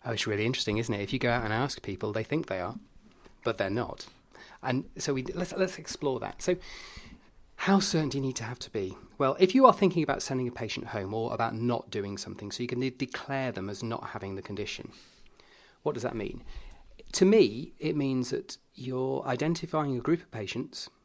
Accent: British